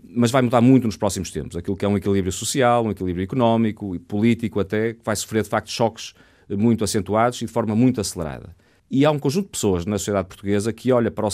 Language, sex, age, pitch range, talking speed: Portuguese, male, 40-59, 100-120 Hz, 240 wpm